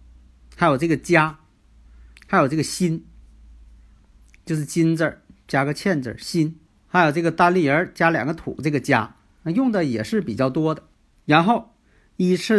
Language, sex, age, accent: Chinese, male, 50-69, native